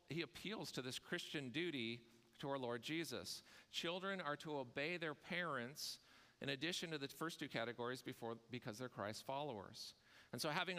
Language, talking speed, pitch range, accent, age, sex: English, 170 wpm, 125-160 Hz, American, 40-59, male